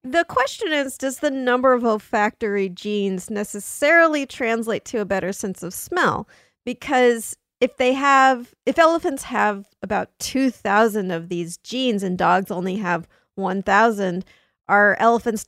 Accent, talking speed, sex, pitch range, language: American, 140 wpm, female, 200-260 Hz, English